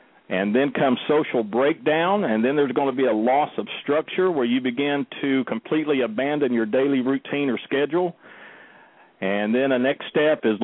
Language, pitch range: English, 125-155 Hz